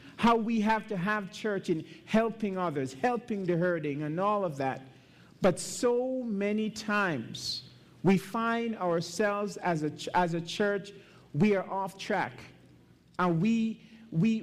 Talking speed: 145 wpm